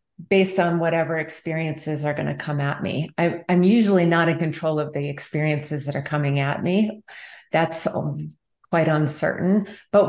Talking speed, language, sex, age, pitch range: 160 wpm, English, female, 30-49, 150-175 Hz